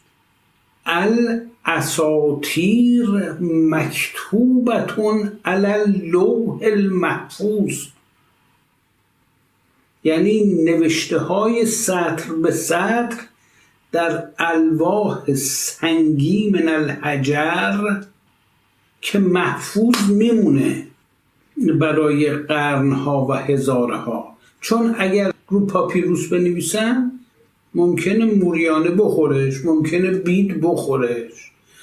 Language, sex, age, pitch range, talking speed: Persian, male, 60-79, 155-200 Hz, 65 wpm